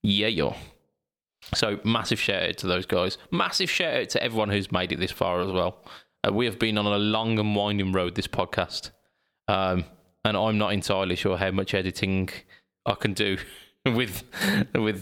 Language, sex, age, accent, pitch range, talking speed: English, male, 20-39, British, 95-115 Hz, 190 wpm